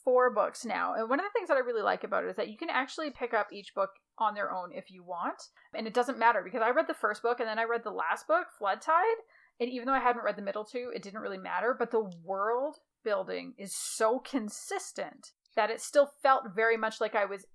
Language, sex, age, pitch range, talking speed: English, female, 30-49, 210-285 Hz, 260 wpm